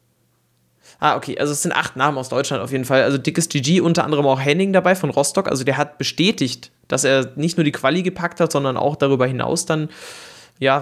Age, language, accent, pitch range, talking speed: 20-39, German, German, 130-165 Hz, 220 wpm